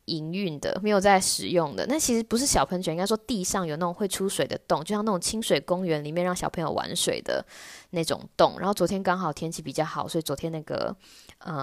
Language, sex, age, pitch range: Chinese, female, 20-39, 170-235 Hz